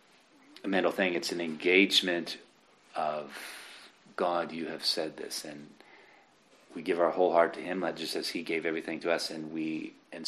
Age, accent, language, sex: 40-59, American, English, male